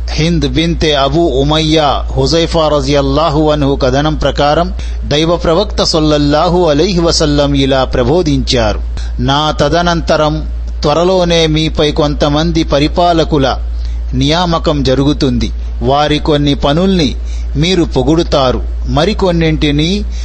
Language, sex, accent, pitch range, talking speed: Telugu, male, native, 130-165 Hz, 90 wpm